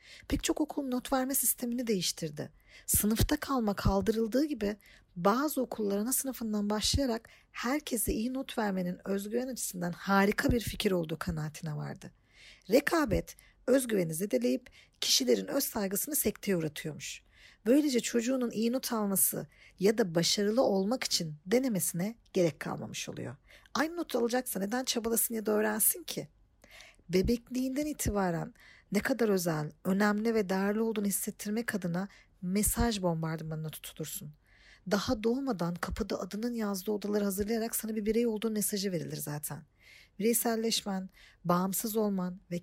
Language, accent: Turkish, native